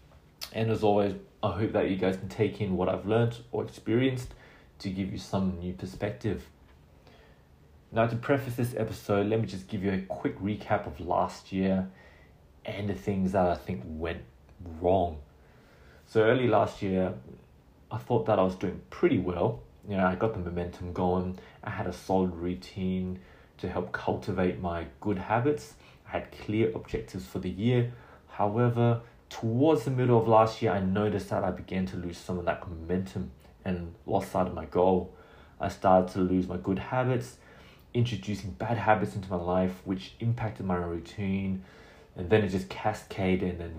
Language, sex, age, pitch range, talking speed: English, male, 30-49, 85-105 Hz, 180 wpm